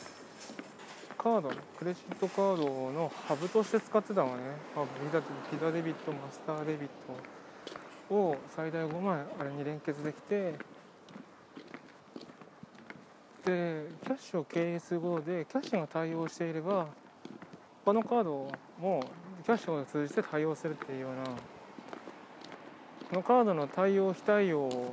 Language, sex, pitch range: Japanese, male, 150-215 Hz